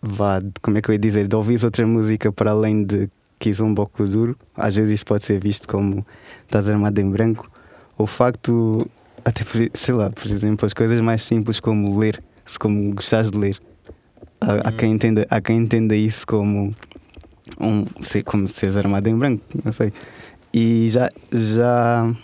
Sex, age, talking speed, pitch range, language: male, 20-39, 180 wpm, 105-115 Hz, Portuguese